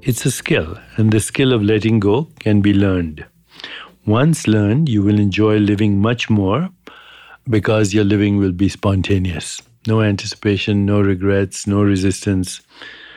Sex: male